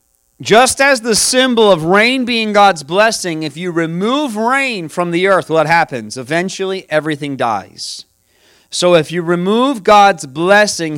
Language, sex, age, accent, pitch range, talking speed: English, male, 40-59, American, 155-200 Hz, 150 wpm